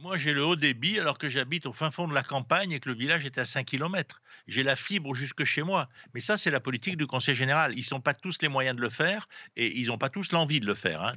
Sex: male